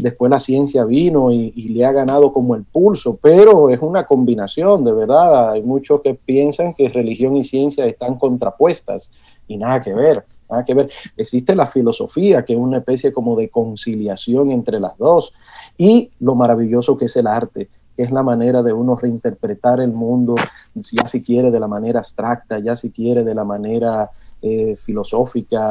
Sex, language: male, Spanish